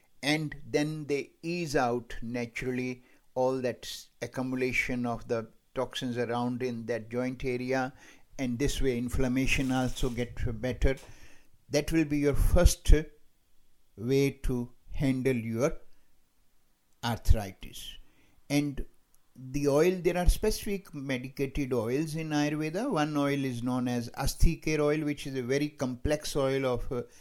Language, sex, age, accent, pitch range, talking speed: English, male, 60-79, Indian, 120-140 Hz, 130 wpm